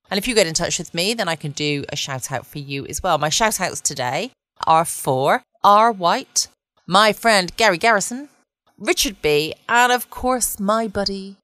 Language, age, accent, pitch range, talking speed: English, 30-49, British, 145-205 Hz, 200 wpm